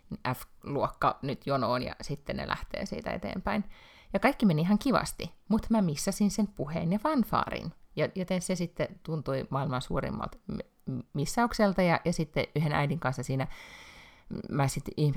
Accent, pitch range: native, 140-195 Hz